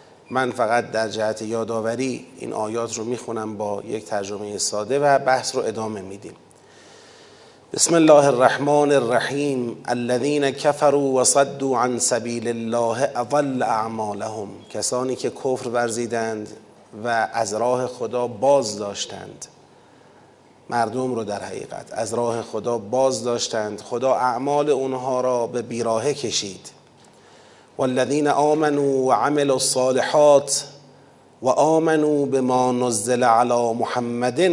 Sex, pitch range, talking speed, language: male, 115-140 Hz, 115 wpm, Persian